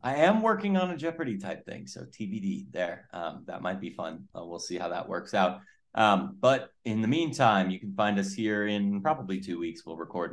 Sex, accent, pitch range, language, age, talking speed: male, American, 95-130 Hz, English, 30-49, 225 wpm